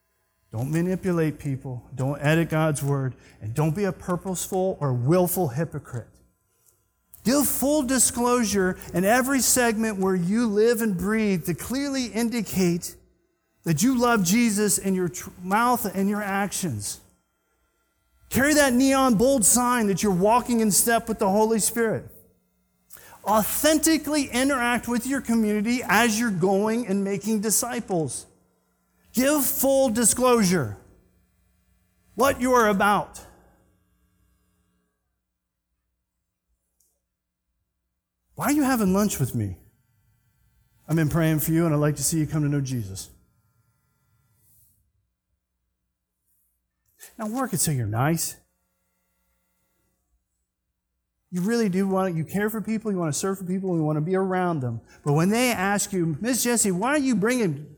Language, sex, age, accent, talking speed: English, male, 40-59, American, 135 wpm